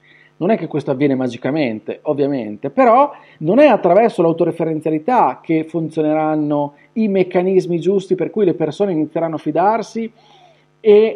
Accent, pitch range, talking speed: native, 155-210 Hz, 135 wpm